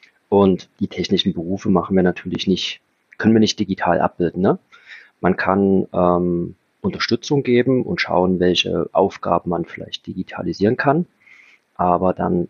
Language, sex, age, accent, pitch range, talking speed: German, male, 40-59, German, 90-110 Hz, 135 wpm